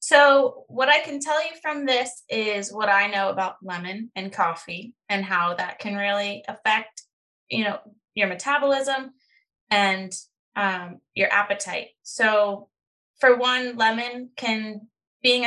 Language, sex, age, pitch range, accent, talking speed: English, female, 20-39, 195-240 Hz, American, 140 wpm